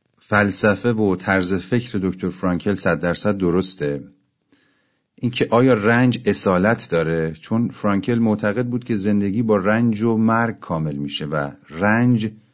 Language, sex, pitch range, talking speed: Persian, male, 90-110 Hz, 135 wpm